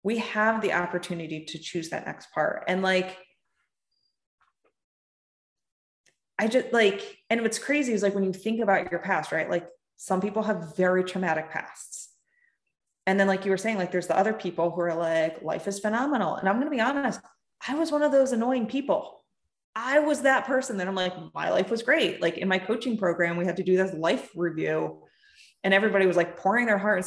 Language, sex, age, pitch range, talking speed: English, female, 20-39, 180-225 Hz, 205 wpm